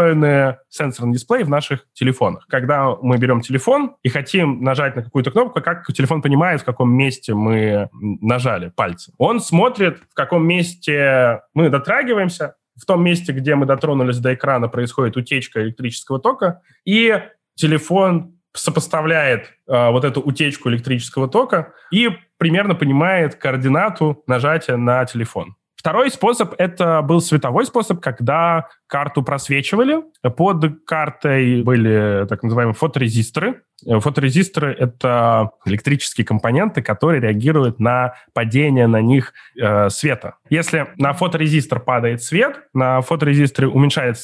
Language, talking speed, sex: Russian, 130 wpm, male